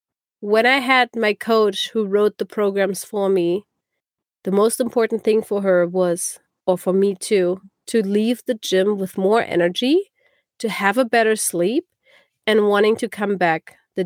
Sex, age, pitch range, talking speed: female, 30-49, 195-245 Hz, 170 wpm